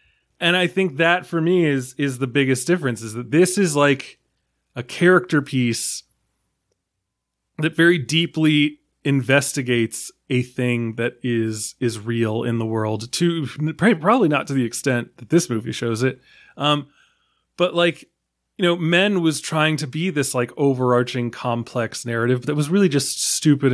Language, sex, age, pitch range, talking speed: English, male, 20-39, 120-150 Hz, 160 wpm